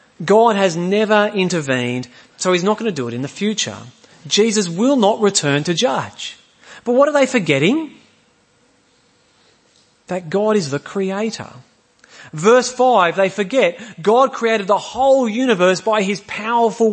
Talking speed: 150 wpm